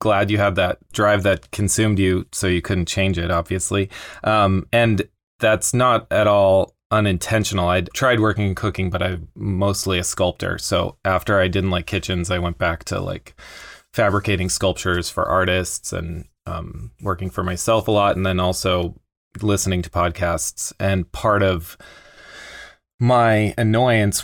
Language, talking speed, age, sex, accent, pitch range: English, 160 wpm, 20-39, male, American, 90-105 Hz